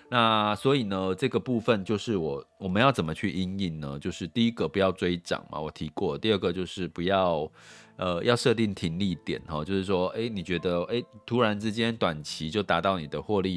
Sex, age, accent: male, 30-49, native